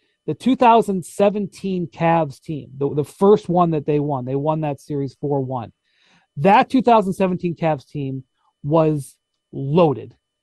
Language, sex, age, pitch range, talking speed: English, male, 40-59, 150-195 Hz, 125 wpm